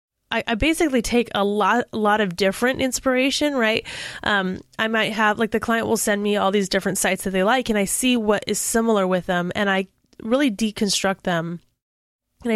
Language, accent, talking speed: English, American, 195 wpm